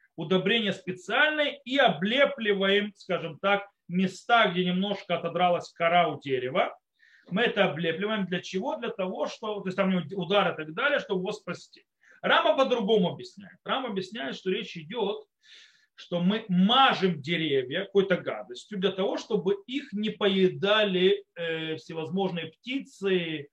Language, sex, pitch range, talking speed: Russian, male, 170-230 Hz, 135 wpm